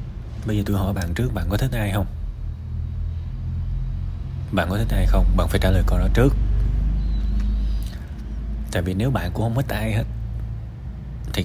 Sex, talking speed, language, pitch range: male, 175 wpm, Vietnamese, 90-115 Hz